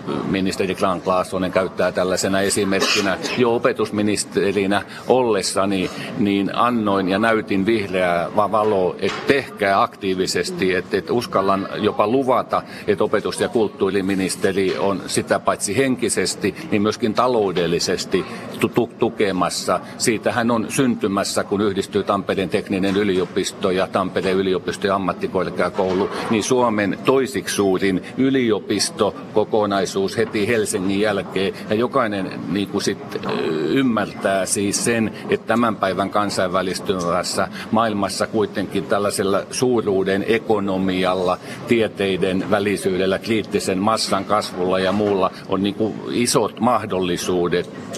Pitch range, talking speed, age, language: 95-115 Hz, 105 wpm, 50-69, Finnish